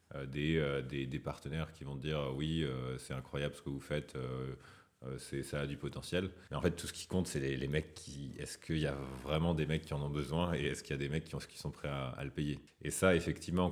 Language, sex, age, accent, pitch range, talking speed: French, male, 30-49, French, 70-85 Hz, 265 wpm